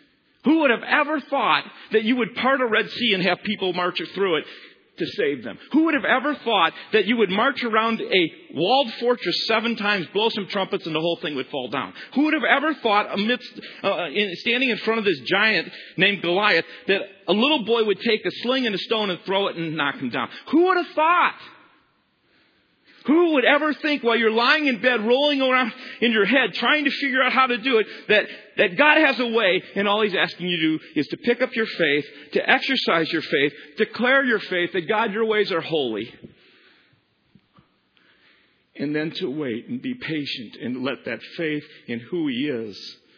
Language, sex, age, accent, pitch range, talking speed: English, male, 40-59, American, 180-265 Hz, 210 wpm